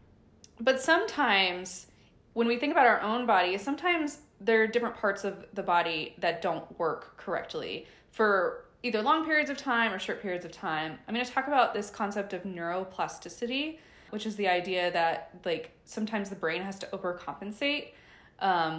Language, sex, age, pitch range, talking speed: English, female, 20-39, 185-260 Hz, 170 wpm